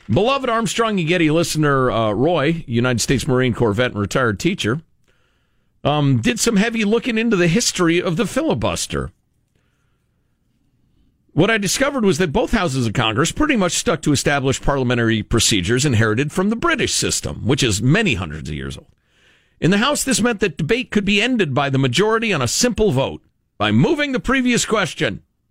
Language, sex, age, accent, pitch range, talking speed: English, male, 50-69, American, 125-200 Hz, 180 wpm